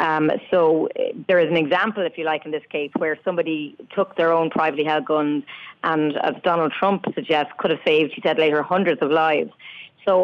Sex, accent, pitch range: female, Irish, 150-185 Hz